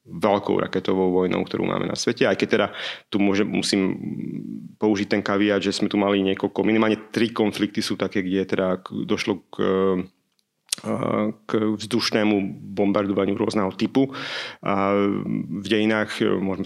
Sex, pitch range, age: male, 95-105 Hz, 30-49